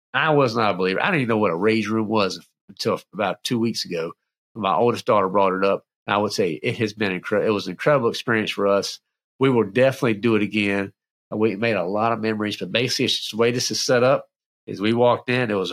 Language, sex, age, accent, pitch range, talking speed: English, male, 40-59, American, 100-125 Hz, 255 wpm